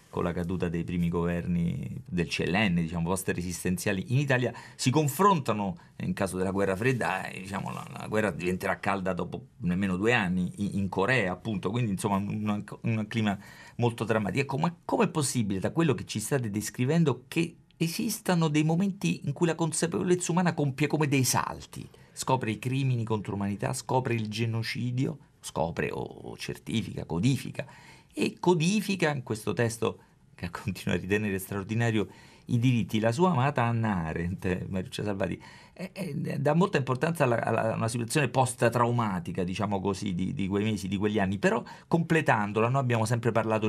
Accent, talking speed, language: native, 165 wpm, Italian